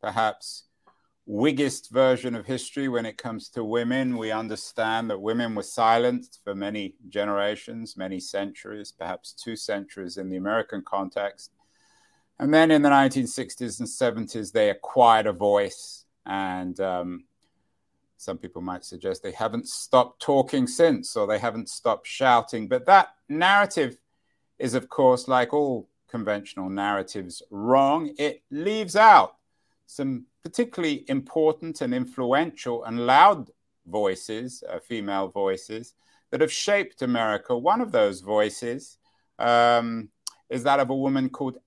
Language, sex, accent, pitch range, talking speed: English, male, British, 105-150 Hz, 135 wpm